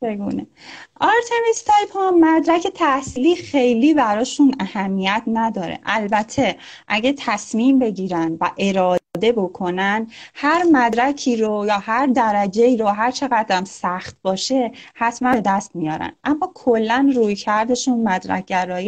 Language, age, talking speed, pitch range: Persian, 30-49, 115 wpm, 195-255 Hz